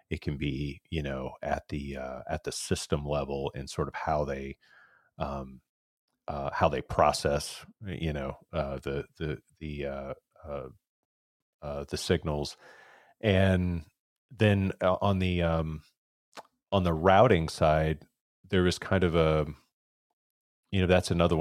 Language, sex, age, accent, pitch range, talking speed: English, male, 30-49, American, 75-90 Hz, 145 wpm